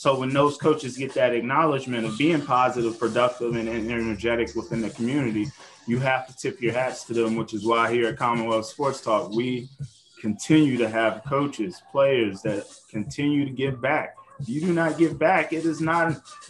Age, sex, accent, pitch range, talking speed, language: 20-39, male, American, 120-145 Hz, 195 wpm, English